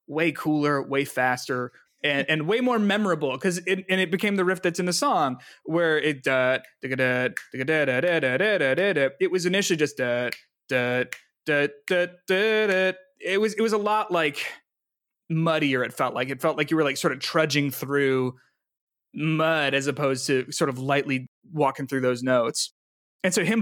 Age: 20-39